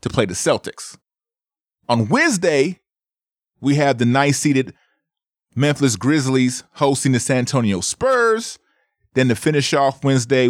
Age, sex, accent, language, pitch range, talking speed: 30-49, male, American, English, 95-130 Hz, 130 wpm